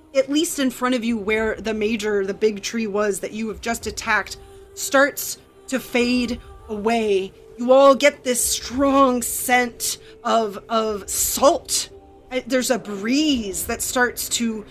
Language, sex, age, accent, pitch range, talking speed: English, female, 30-49, American, 215-270 Hz, 150 wpm